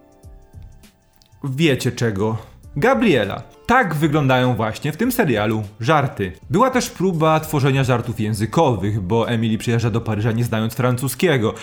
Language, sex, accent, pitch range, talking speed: Polish, male, native, 115-165 Hz, 125 wpm